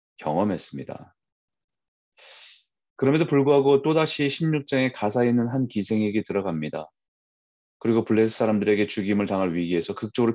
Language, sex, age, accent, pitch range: Korean, male, 30-49, native, 90-130 Hz